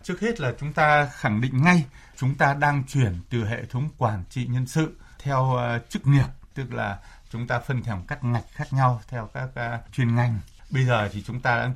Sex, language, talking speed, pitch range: male, Vietnamese, 225 wpm, 115-145 Hz